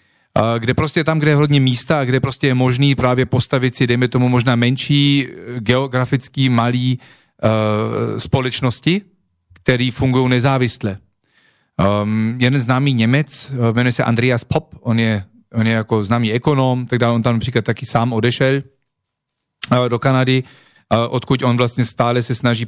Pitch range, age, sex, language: 120-140 Hz, 40-59, male, Slovak